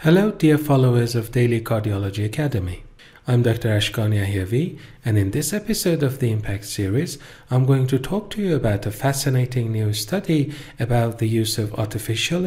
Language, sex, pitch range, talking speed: Persian, male, 105-150 Hz, 170 wpm